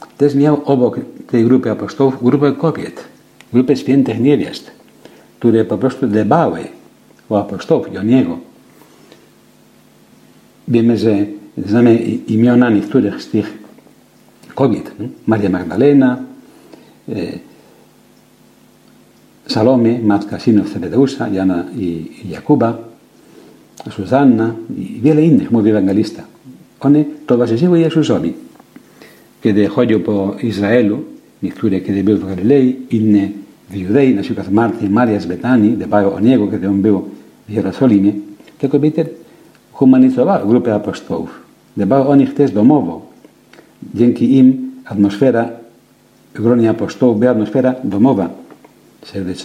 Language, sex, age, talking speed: Polish, male, 60-79, 100 wpm